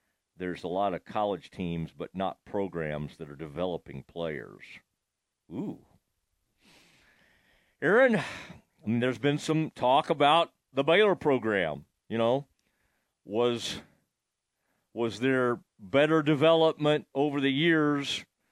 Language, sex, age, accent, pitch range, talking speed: English, male, 50-69, American, 125-155 Hz, 105 wpm